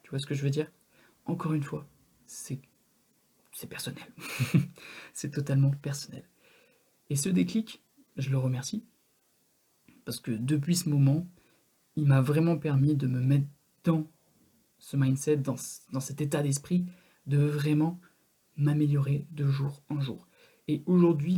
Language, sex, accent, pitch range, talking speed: French, male, French, 140-170 Hz, 140 wpm